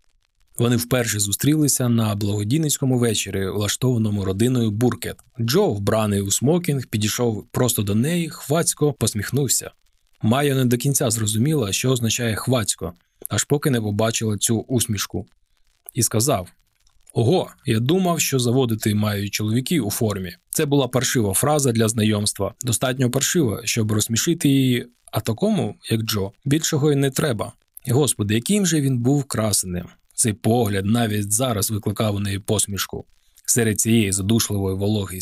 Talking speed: 140 wpm